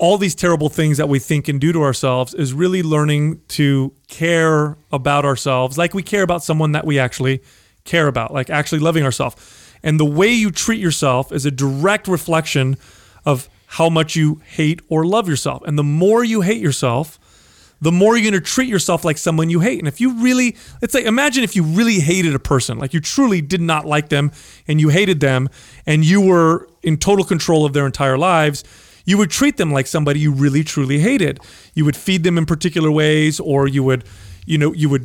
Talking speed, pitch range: 210 wpm, 140-175 Hz